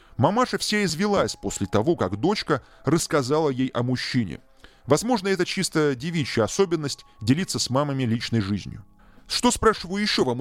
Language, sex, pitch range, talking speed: Russian, male, 115-180 Hz, 145 wpm